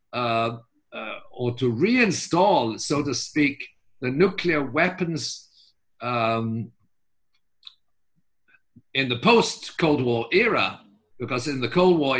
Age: 50-69